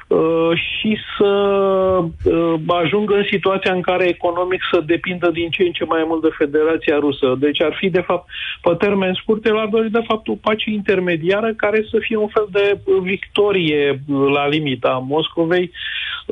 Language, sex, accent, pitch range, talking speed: Romanian, male, native, 150-195 Hz, 160 wpm